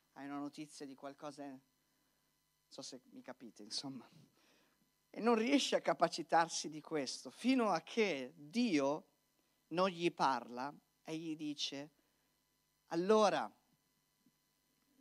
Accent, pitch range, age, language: native, 155-210 Hz, 40-59, Italian